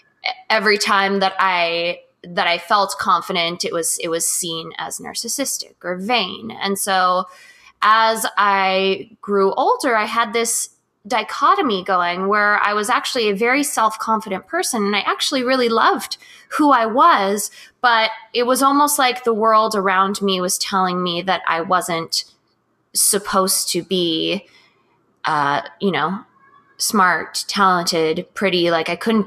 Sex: female